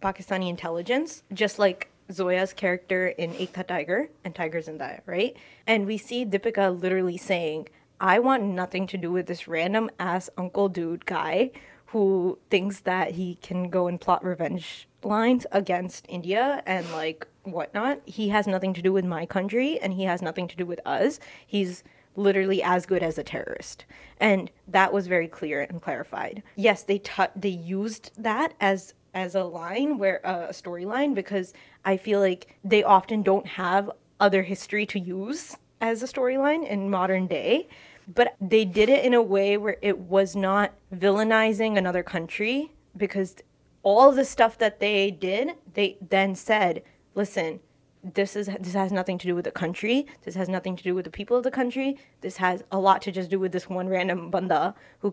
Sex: female